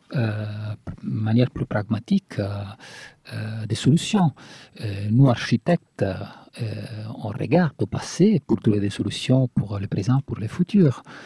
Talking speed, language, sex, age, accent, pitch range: 145 wpm, French, male, 50-69, Italian, 105-145 Hz